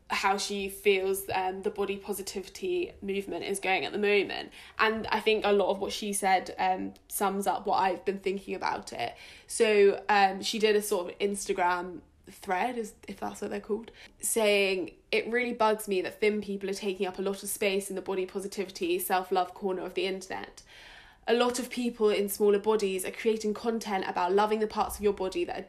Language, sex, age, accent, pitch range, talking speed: English, female, 10-29, British, 195-225 Hz, 205 wpm